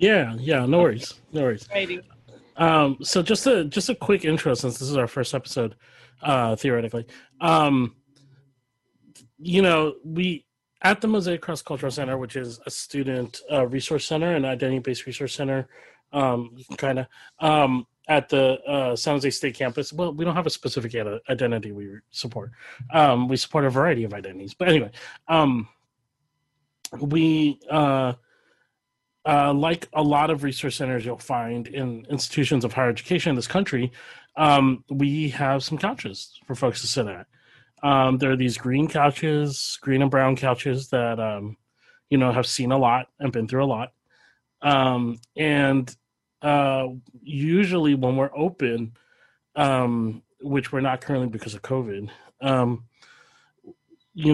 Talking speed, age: 160 wpm, 30-49